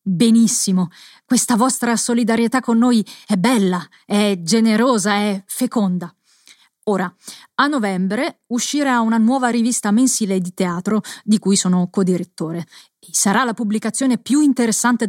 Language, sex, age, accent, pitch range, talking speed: Italian, female, 30-49, native, 190-230 Hz, 125 wpm